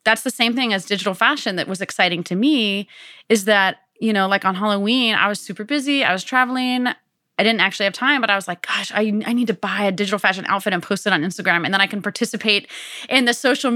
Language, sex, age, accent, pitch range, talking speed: English, female, 20-39, American, 180-225 Hz, 255 wpm